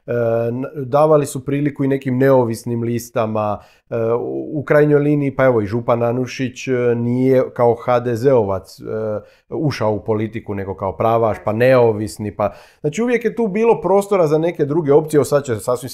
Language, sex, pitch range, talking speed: Croatian, male, 115-150 Hz, 175 wpm